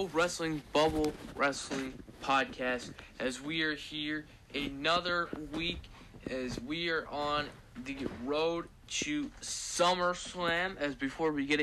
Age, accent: 20-39, American